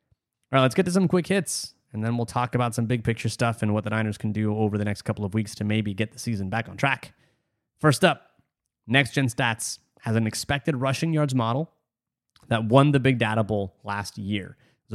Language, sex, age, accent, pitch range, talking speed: English, male, 30-49, American, 110-140 Hz, 230 wpm